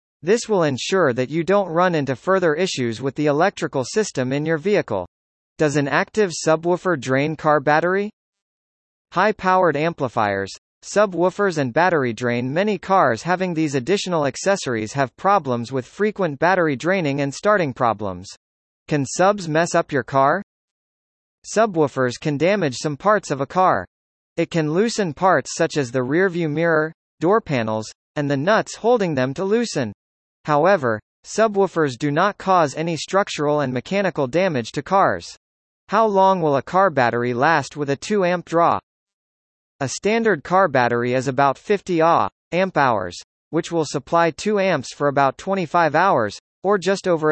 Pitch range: 130-190 Hz